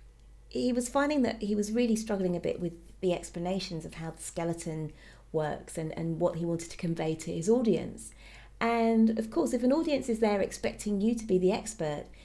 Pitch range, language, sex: 160-210 Hz, English, female